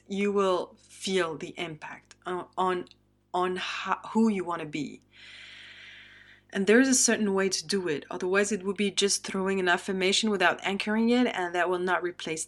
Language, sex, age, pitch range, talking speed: English, female, 30-49, 175-210 Hz, 190 wpm